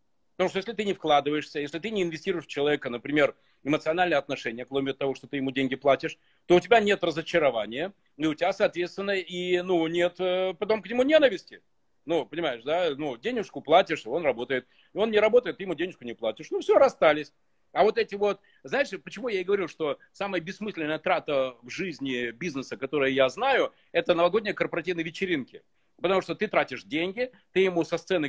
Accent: native